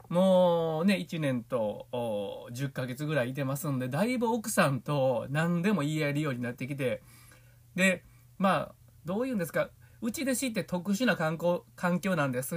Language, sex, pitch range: Japanese, male, 130-195 Hz